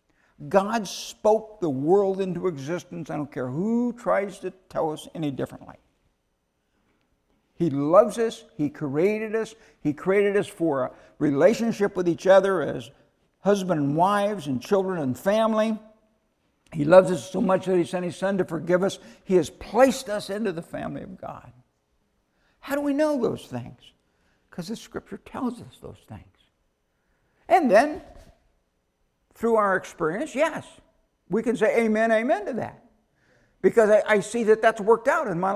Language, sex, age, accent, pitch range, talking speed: English, male, 60-79, American, 145-220 Hz, 160 wpm